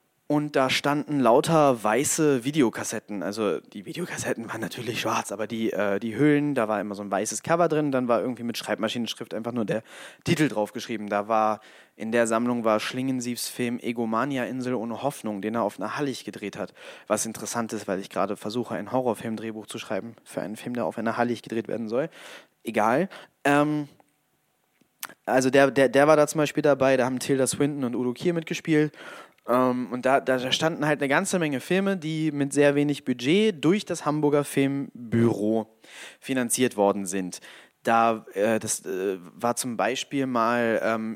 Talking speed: 180 wpm